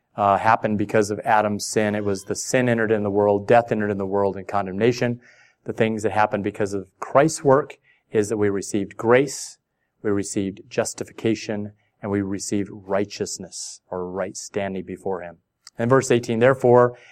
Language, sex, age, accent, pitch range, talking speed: English, male, 30-49, American, 105-125 Hz, 175 wpm